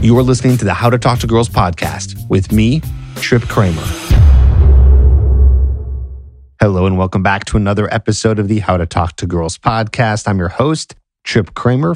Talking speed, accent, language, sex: 175 wpm, American, English, male